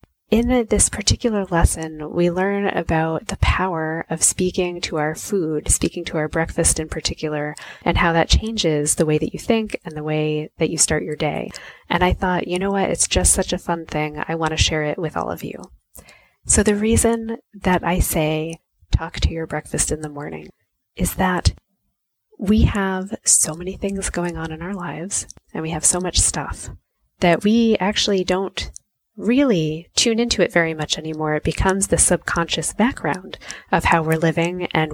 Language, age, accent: English, 20-39, American